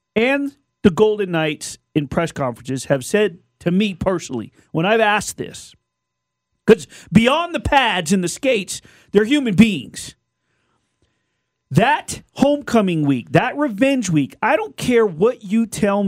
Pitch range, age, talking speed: 180-245 Hz, 40-59, 140 wpm